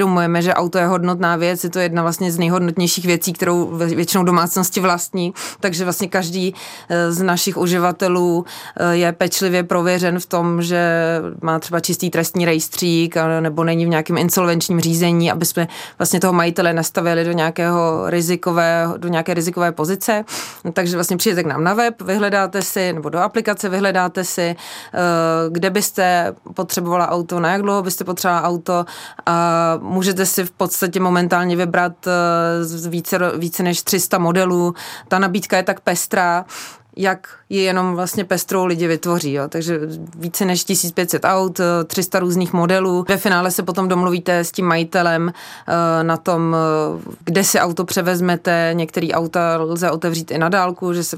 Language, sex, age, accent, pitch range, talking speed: Czech, female, 30-49, native, 165-185 Hz, 155 wpm